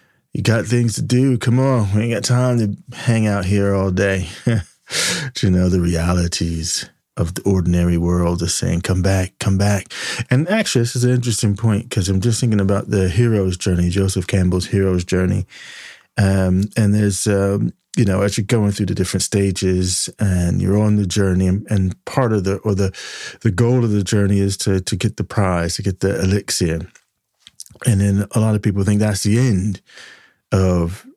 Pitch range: 95-110 Hz